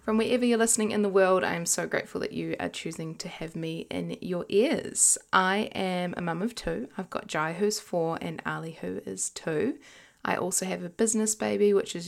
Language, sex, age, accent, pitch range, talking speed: English, female, 10-29, Australian, 150-195 Hz, 225 wpm